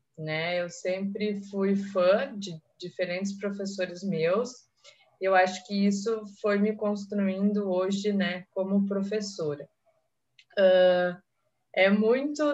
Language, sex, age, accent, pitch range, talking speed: Portuguese, female, 20-39, Brazilian, 180-210 Hz, 110 wpm